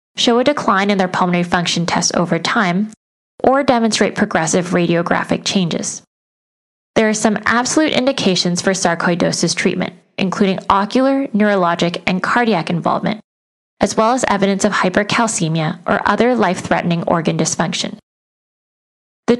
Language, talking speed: English, 125 wpm